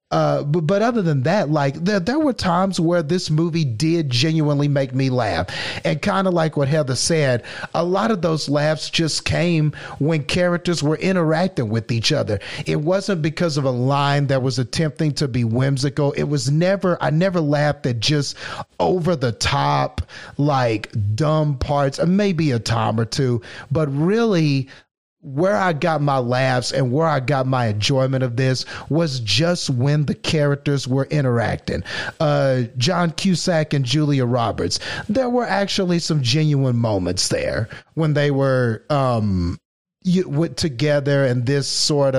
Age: 40-59